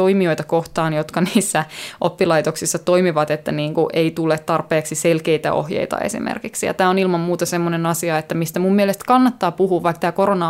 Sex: female